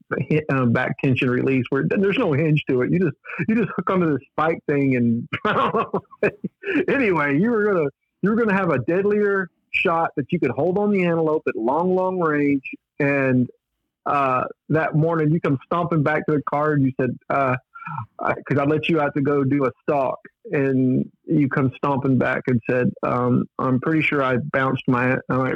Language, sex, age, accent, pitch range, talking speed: English, male, 50-69, American, 130-165 Hz, 195 wpm